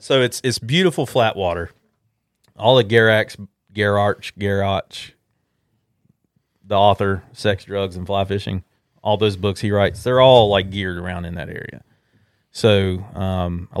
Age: 30-49